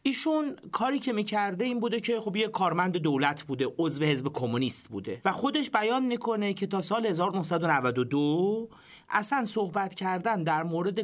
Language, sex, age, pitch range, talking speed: Persian, male, 40-59, 155-230 Hz, 160 wpm